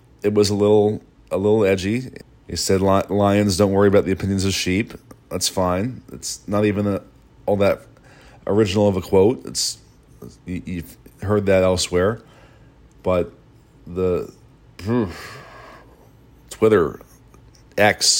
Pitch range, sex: 95-110 Hz, male